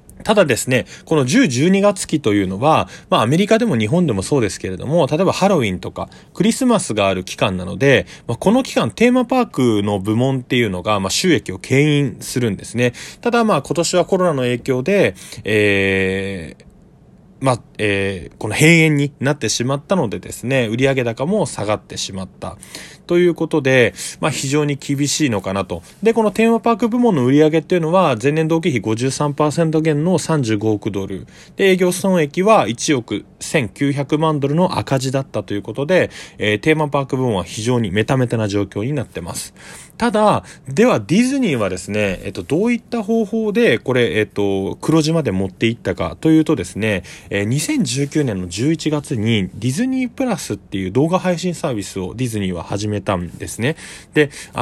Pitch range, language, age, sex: 105-175 Hz, Japanese, 20-39, male